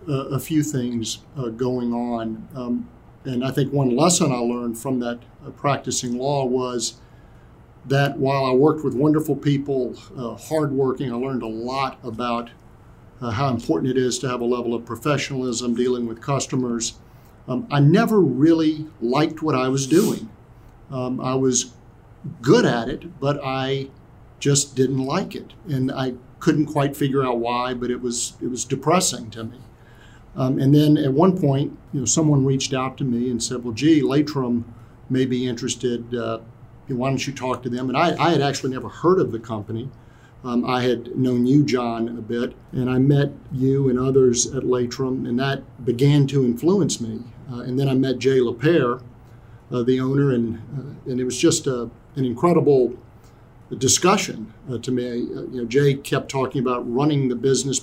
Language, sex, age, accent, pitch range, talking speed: English, male, 50-69, American, 120-140 Hz, 185 wpm